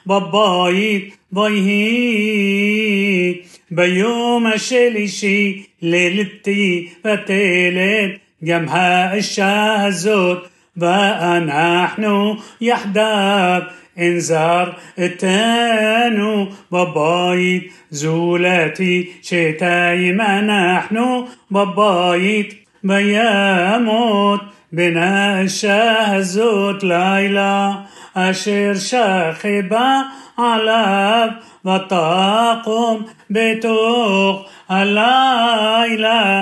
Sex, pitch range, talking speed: male, 185-225 Hz, 45 wpm